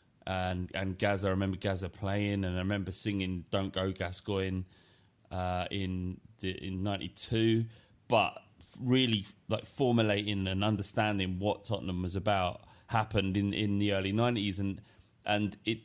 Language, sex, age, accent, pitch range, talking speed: English, male, 30-49, British, 95-115 Hz, 145 wpm